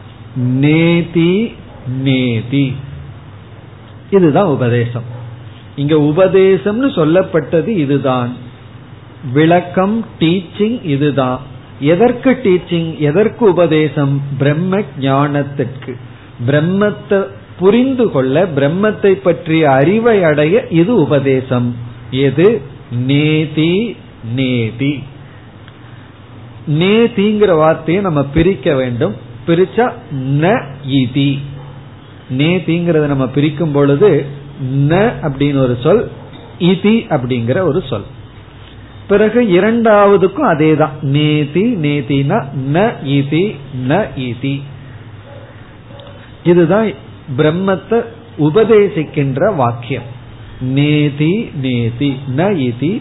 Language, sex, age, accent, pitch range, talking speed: Tamil, male, 50-69, native, 125-175 Hz, 60 wpm